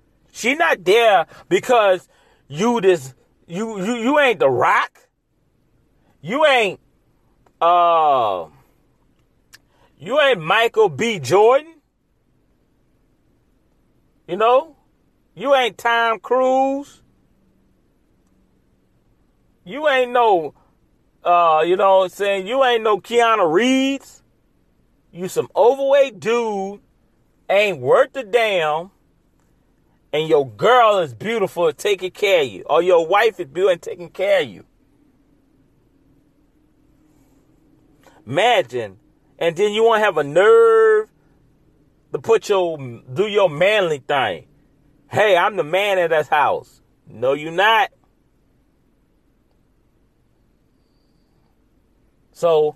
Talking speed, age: 105 wpm, 40-59